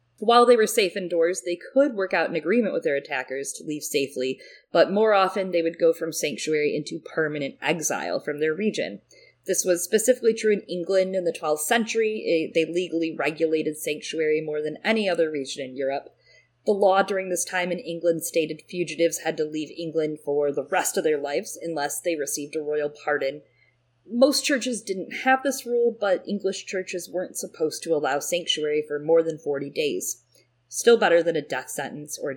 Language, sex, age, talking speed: English, female, 30-49, 190 wpm